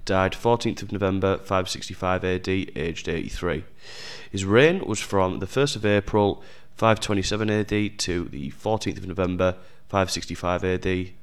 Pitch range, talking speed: 95-110 Hz, 130 wpm